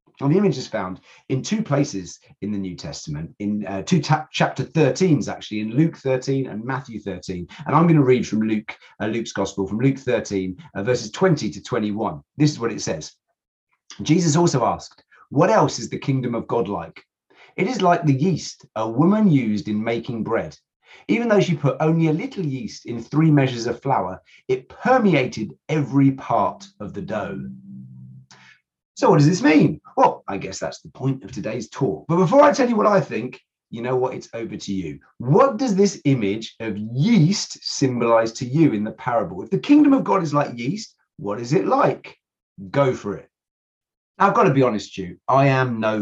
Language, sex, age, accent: English, male, 30-49, British